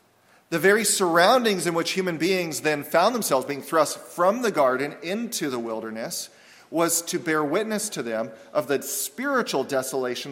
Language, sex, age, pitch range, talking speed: English, male, 40-59, 140-190 Hz, 165 wpm